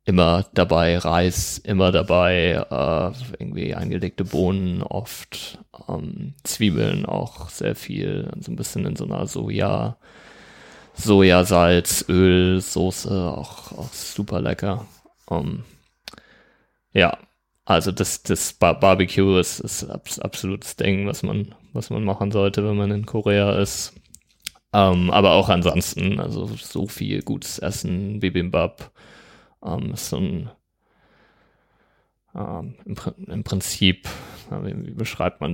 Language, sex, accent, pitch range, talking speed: German, male, German, 90-100 Hz, 115 wpm